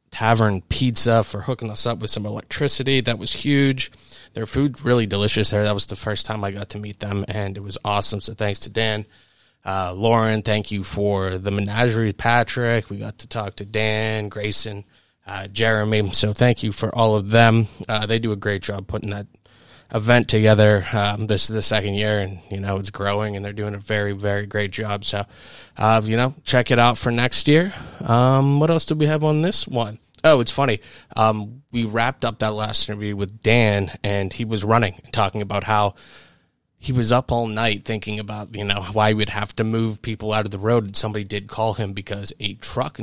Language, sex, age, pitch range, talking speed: English, male, 20-39, 100-115 Hz, 215 wpm